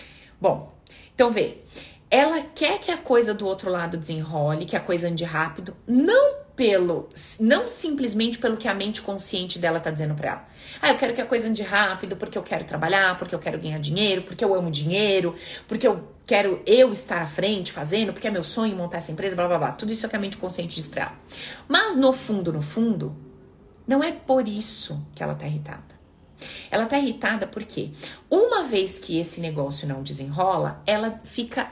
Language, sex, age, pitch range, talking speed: Portuguese, female, 30-49, 175-250 Hz, 200 wpm